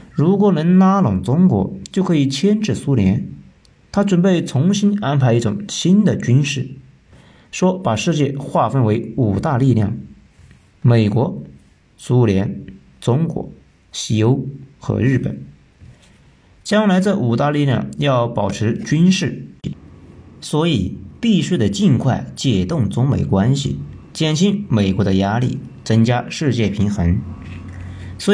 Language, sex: Chinese, male